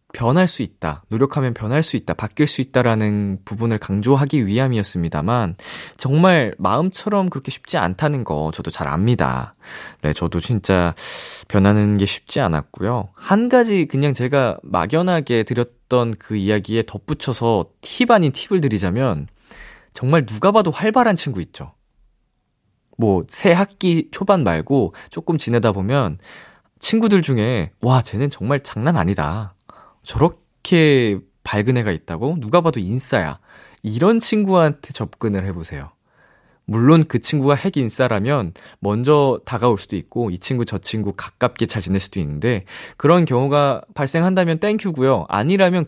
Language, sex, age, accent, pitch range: Korean, male, 20-39, native, 105-160 Hz